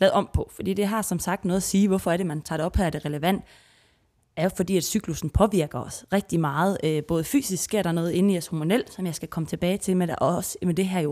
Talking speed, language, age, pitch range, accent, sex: 310 wpm, Danish, 20-39, 155-195 Hz, native, female